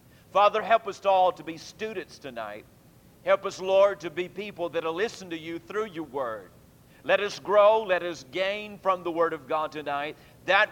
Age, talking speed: 50-69, 195 wpm